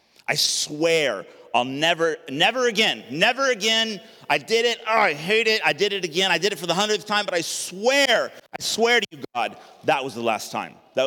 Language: English